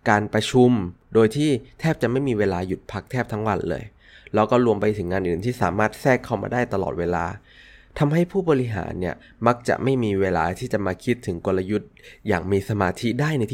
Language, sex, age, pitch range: Thai, male, 20-39, 95-120 Hz